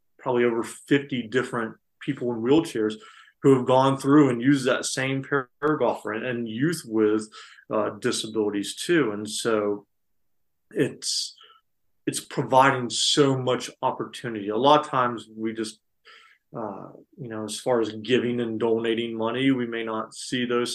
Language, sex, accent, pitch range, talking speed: English, male, American, 110-135 Hz, 150 wpm